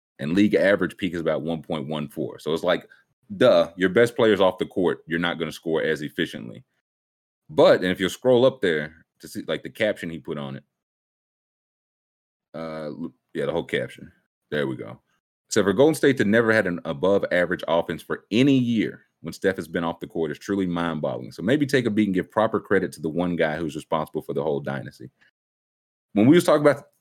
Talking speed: 215 wpm